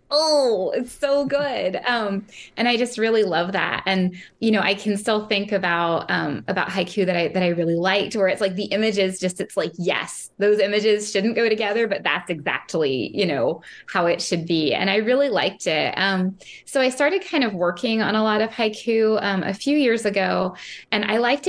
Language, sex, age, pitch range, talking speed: English, female, 20-39, 185-225 Hz, 210 wpm